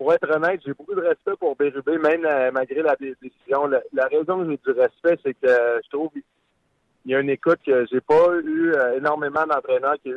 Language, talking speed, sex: French, 230 wpm, male